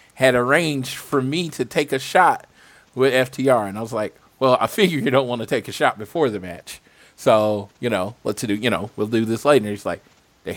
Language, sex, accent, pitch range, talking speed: English, male, American, 110-130 Hz, 240 wpm